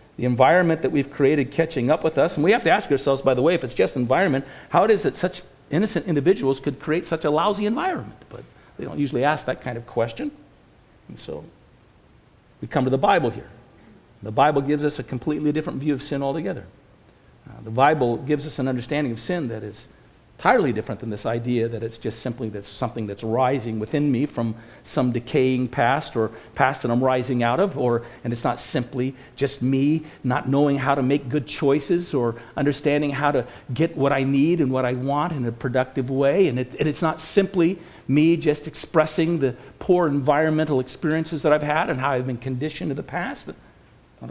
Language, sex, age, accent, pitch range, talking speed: English, male, 50-69, American, 125-155 Hz, 205 wpm